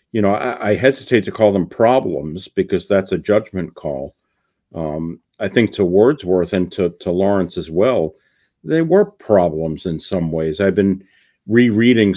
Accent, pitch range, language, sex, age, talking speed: American, 85-105 Hz, English, male, 50-69, 170 wpm